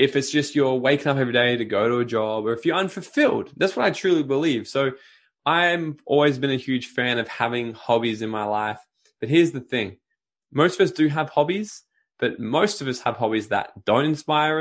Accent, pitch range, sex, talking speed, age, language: Australian, 115-145 Hz, male, 220 wpm, 10-29, English